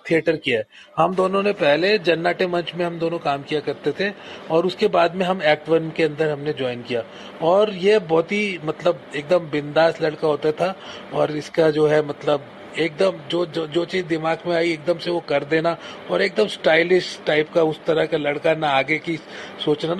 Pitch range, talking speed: 160-210 Hz, 205 wpm